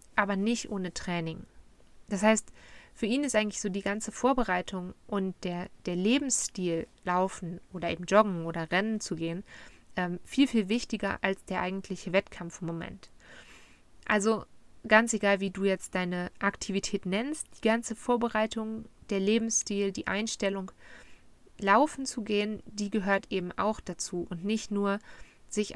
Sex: female